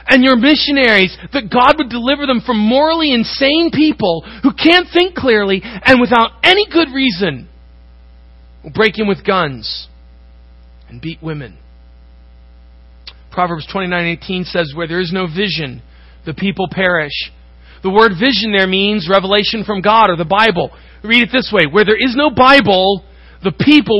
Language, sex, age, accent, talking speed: English, male, 40-59, American, 155 wpm